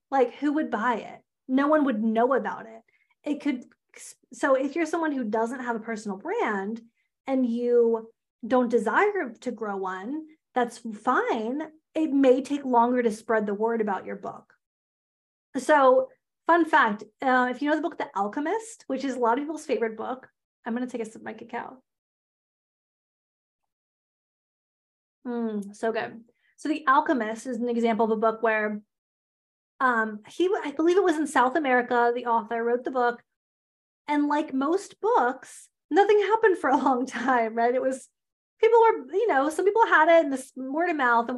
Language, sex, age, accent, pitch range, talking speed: English, female, 30-49, American, 230-295 Hz, 180 wpm